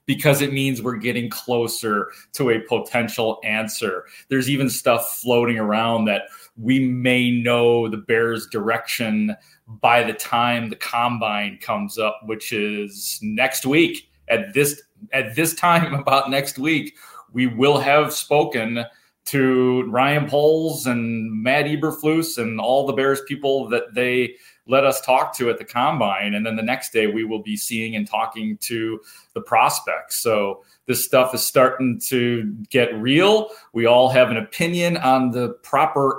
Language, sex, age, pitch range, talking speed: English, male, 30-49, 115-140 Hz, 160 wpm